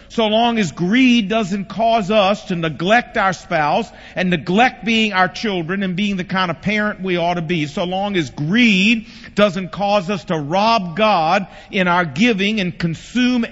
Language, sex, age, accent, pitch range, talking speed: English, male, 50-69, American, 155-210 Hz, 180 wpm